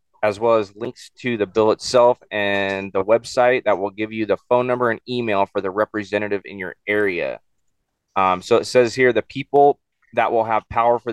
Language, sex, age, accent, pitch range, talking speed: English, male, 30-49, American, 105-125 Hz, 205 wpm